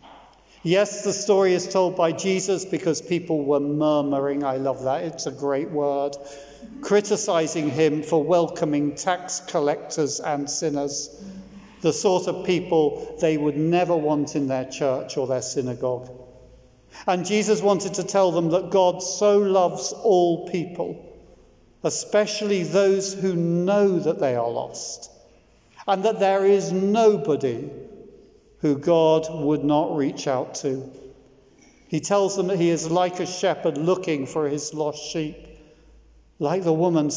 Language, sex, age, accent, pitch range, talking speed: English, male, 50-69, British, 145-190 Hz, 145 wpm